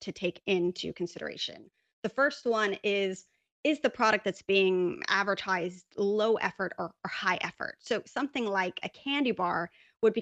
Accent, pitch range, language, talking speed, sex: American, 190-235 Hz, English, 165 wpm, female